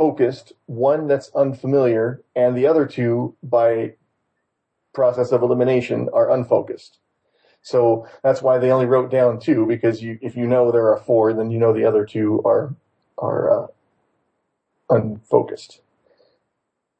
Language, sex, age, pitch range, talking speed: English, male, 30-49, 115-135 Hz, 140 wpm